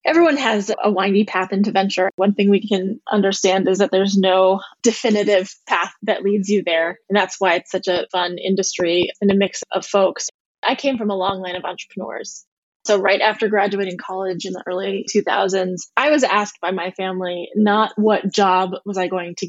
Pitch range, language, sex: 190-210 Hz, English, female